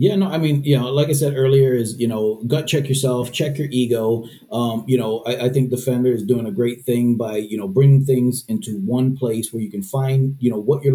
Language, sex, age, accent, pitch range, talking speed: English, male, 40-59, American, 120-135 Hz, 260 wpm